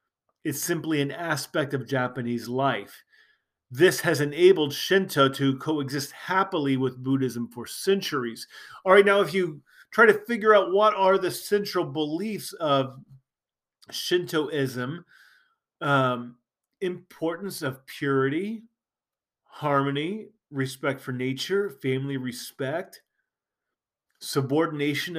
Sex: male